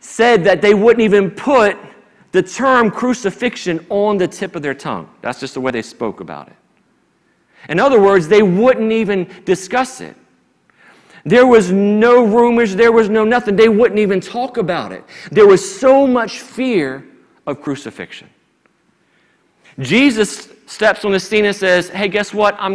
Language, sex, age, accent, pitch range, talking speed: English, male, 40-59, American, 190-255 Hz, 165 wpm